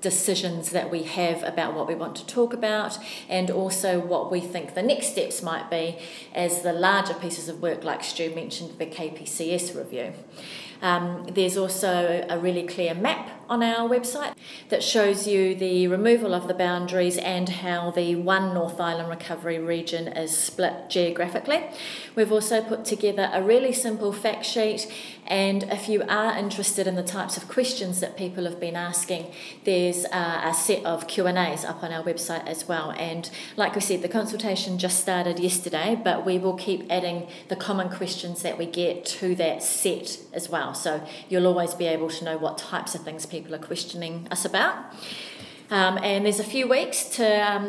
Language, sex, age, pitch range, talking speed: English, female, 30-49, 170-210 Hz, 185 wpm